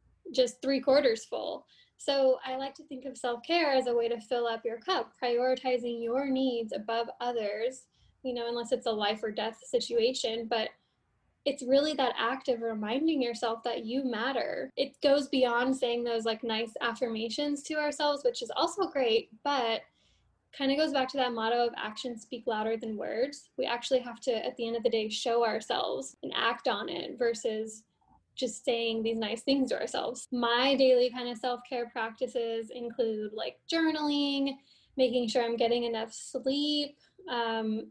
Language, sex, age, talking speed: English, female, 10-29, 180 wpm